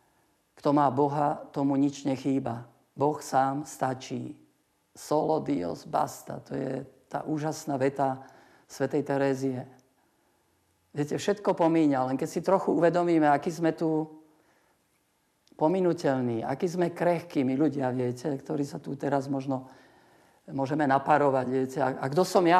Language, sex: Slovak, male